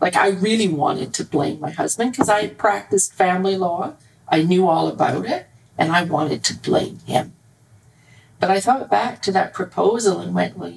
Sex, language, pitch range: female, English, 145-245 Hz